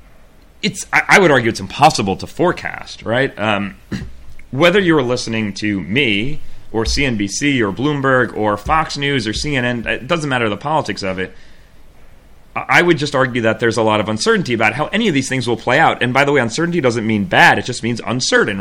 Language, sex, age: English, male, 30-49